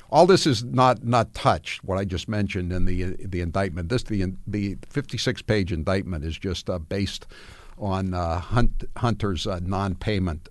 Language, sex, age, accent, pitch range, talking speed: English, male, 60-79, American, 90-110 Hz, 170 wpm